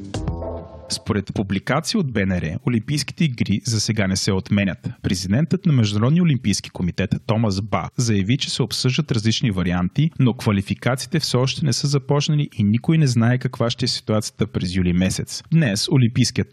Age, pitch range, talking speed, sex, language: 30-49, 100-130 Hz, 160 wpm, male, Bulgarian